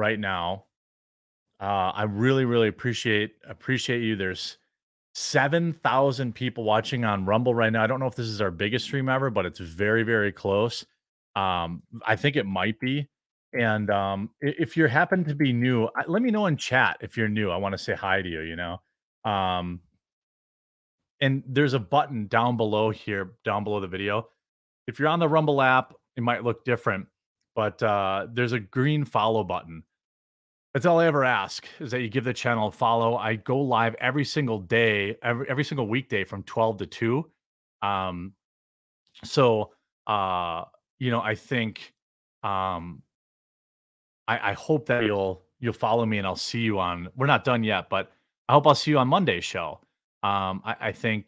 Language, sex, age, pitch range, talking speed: English, male, 30-49, 100-130 Hz, 185 wpm